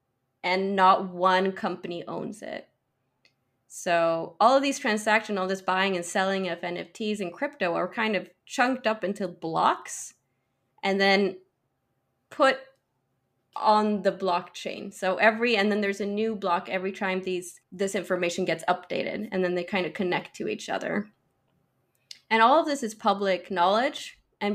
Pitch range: 170-200 Hz